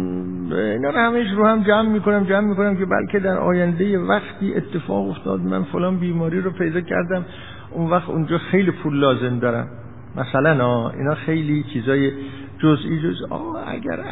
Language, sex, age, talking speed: Persian, male, 60-79, 165 wpm